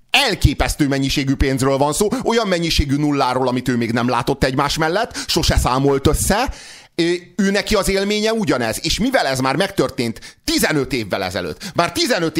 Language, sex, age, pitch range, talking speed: Hungarian, male, 30-49, 120-145 Hz, 160 wpm